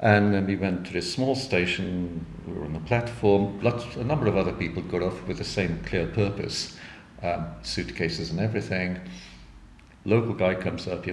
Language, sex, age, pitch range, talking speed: English, male, 50-69, 90-105 Hz, 190 wpm